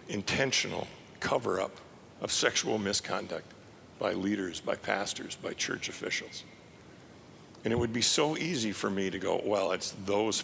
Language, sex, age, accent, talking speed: English, male, 50-69, American, 145 wpm